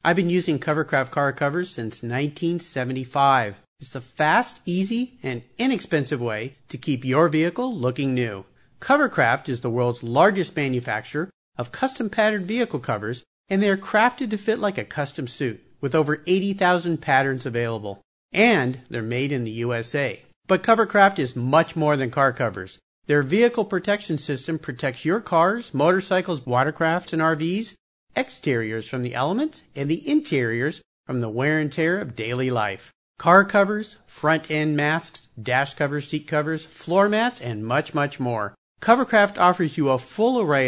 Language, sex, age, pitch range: English, male, 50-69, 130-185 Hz